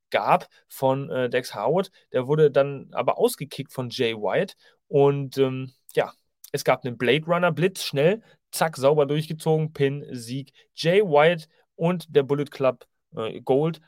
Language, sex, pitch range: German, male, 130-165 Hz